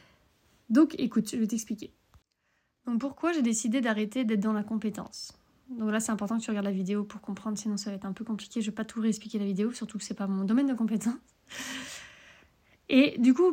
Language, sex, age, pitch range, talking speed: French, female, 20-39, 210-255 Hz, 230 wpm